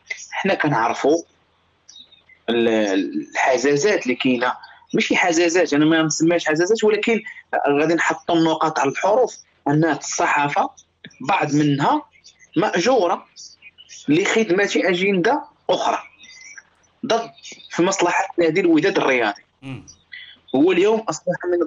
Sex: male